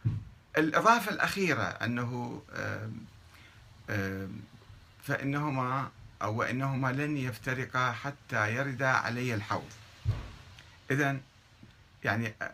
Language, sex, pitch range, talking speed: Arabic, male, 110-155 Hz, 65 wpm